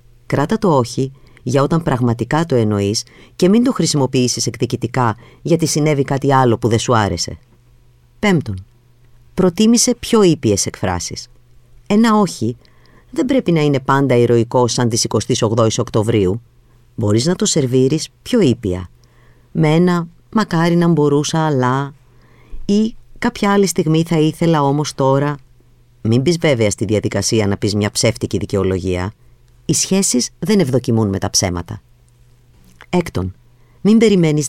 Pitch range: 115-155 Hz